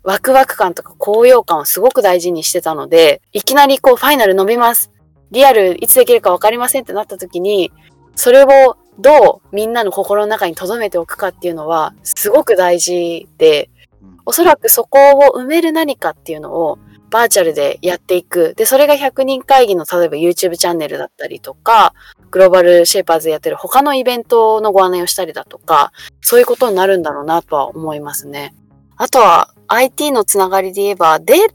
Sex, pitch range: female, 175-265 Hz